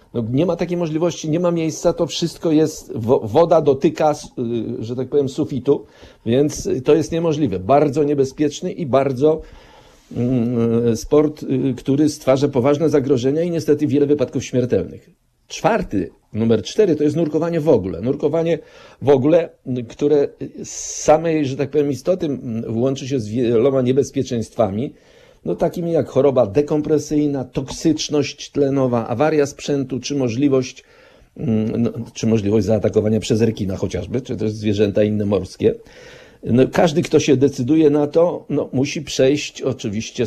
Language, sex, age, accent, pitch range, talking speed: Polish, male, 50-69, native, 125-155 Hz, 140 wpm